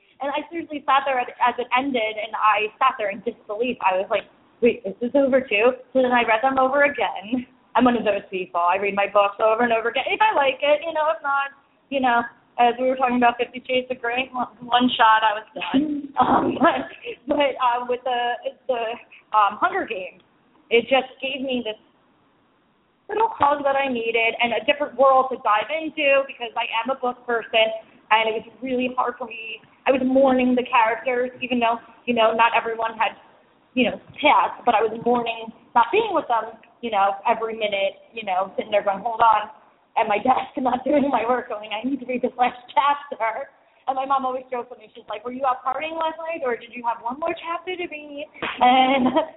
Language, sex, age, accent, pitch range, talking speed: English, female, 20-39, American, 230-280 Hz, 220 wpm